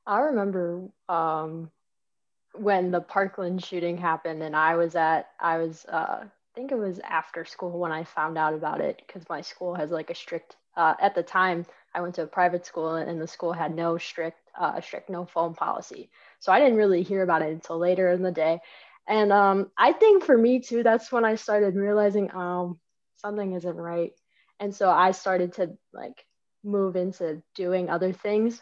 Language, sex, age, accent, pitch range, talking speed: English, female, 20-39, American, 170-215 Hz, 195 wpm